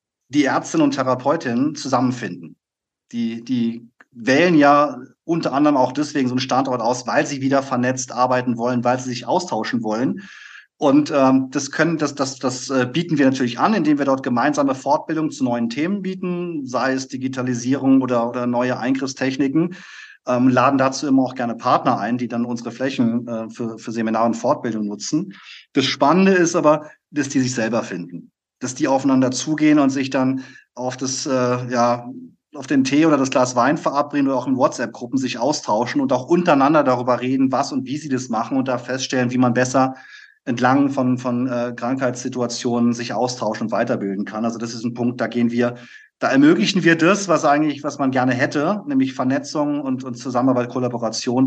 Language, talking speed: German, 185 wpm